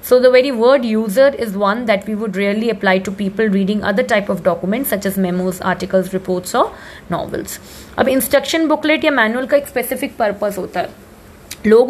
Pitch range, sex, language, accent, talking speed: 205-255 Hz, female, English, Indian, 180 wpm